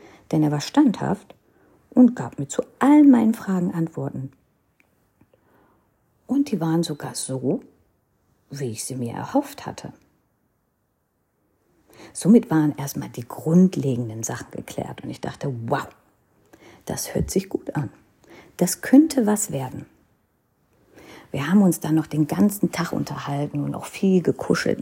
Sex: female